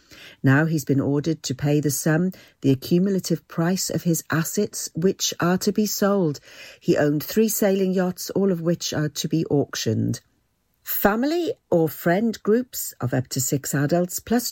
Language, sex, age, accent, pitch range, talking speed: English, female, 50-69, British, 145-210 Hz, 170 wpm